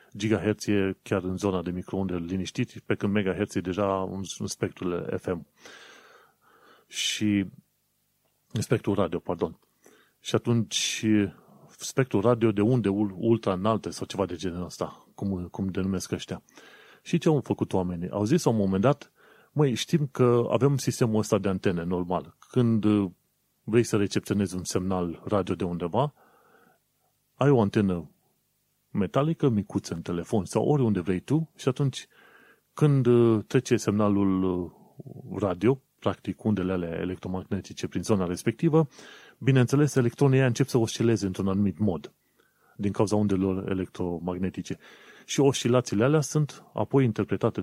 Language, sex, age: Romanian, male, 30-49